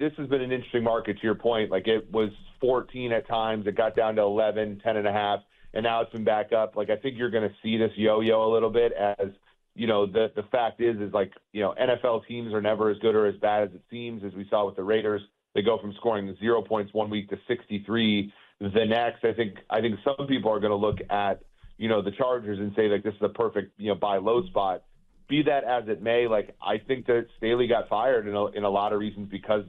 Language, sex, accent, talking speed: English, male, American, 265 wpm